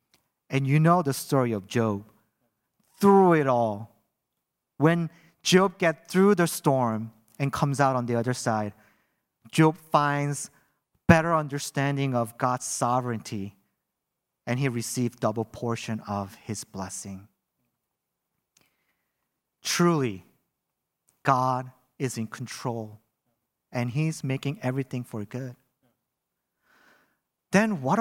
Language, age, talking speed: English, 40-59, 110 wpm